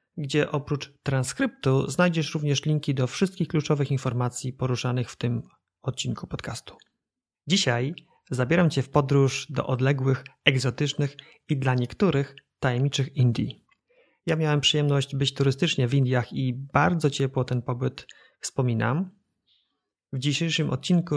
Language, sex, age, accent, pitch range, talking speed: Polish, male, 30-49, native, 125-155 Hz, 125 wpm